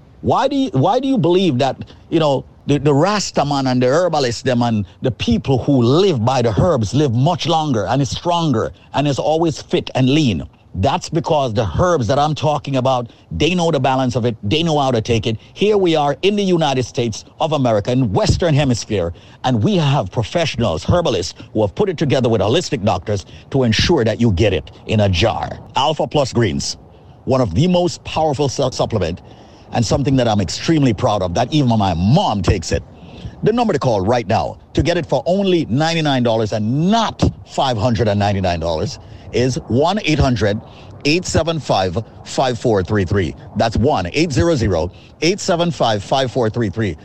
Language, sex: English, male